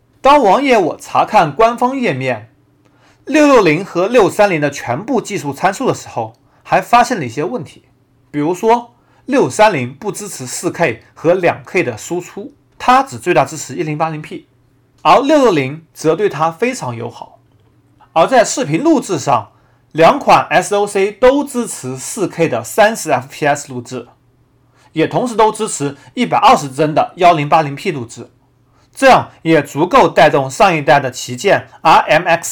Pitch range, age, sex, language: 130-205 Hz, 30-49, male, Chinese